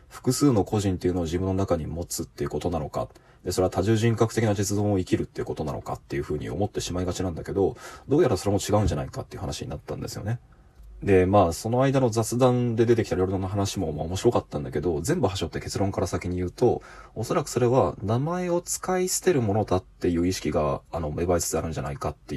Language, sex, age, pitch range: Japanese, male, 20-39, 90-115 Hz